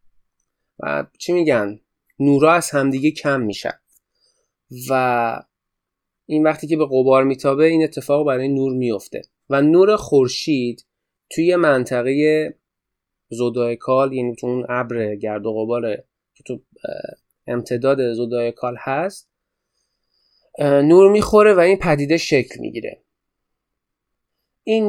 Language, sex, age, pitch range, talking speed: Persian, male, 30-49, 125-165 Hz, 110 wpm